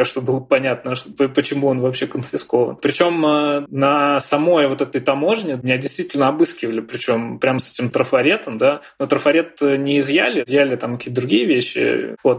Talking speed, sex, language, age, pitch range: 155 wpm, male, Russian, 20-39, 125-145 Hz